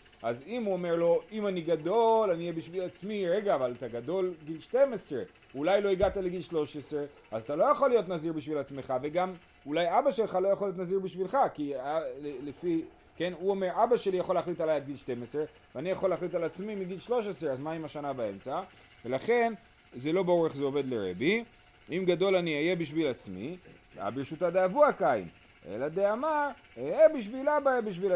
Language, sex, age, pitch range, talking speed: Hebrew, male, 40-59, 145-210 Hz, 180 wpm